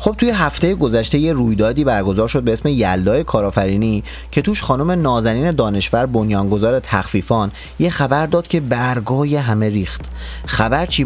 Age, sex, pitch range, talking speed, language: 30-49, male, 105-150 Hz, 150 wpm, Persian